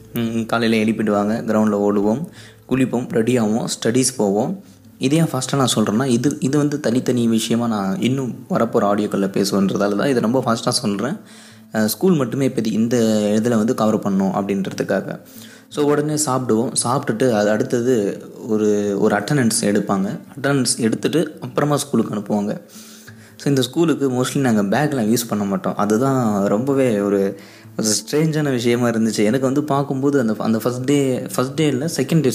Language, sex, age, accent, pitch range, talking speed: Tamil, male, 20-39, native, 110-135 Hz, 145 wpm